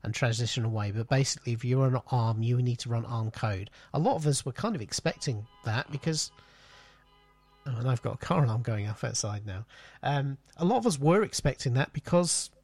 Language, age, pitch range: English, 40-59, 120-145 Hz